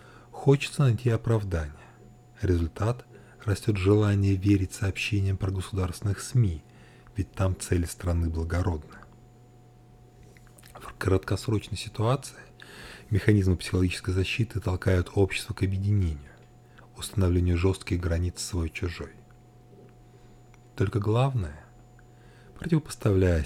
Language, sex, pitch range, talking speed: Russian, male, 90-120 Hz, 85 wpm